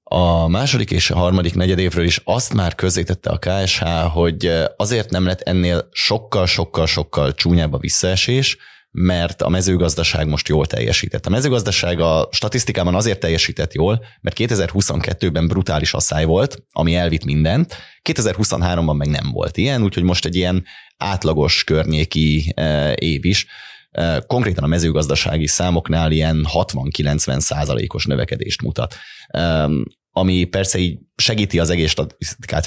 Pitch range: 75-95 Hz